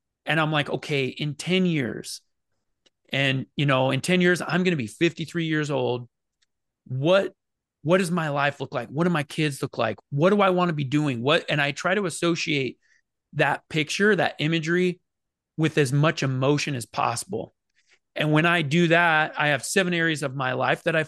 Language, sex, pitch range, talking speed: English, male, 135-165 Hz, 200 wpm